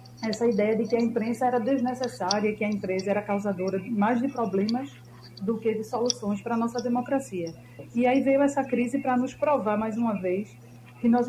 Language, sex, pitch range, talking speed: Portuguese, female, 200-250 Hz, 195 wpm